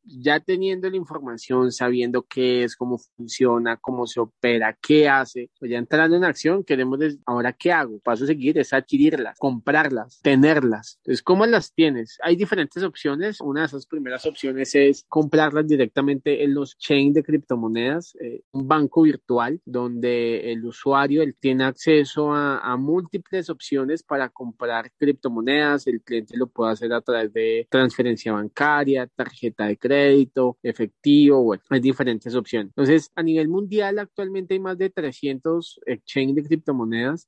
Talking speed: 160 wpm